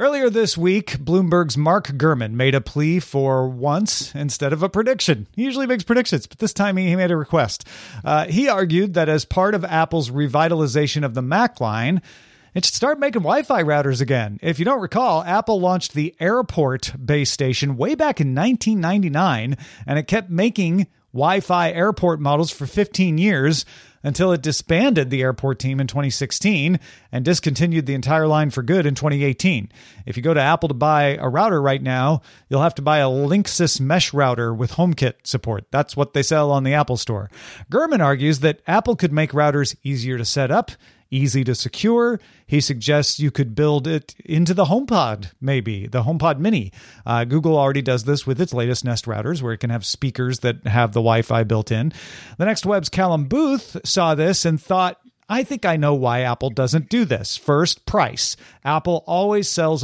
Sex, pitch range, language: male, 135-180 Hz, English